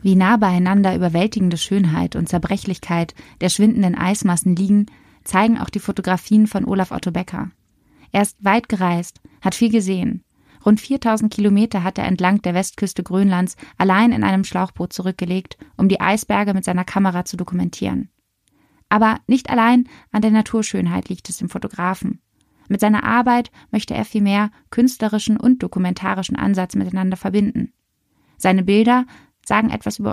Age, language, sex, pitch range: 20-39, German, female, 180-210 Hz